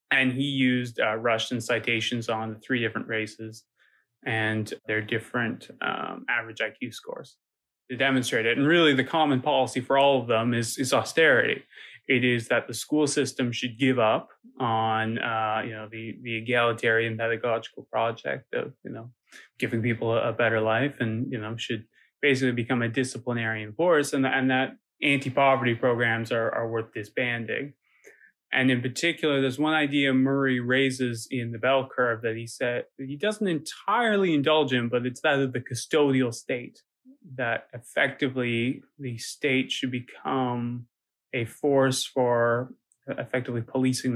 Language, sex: English, male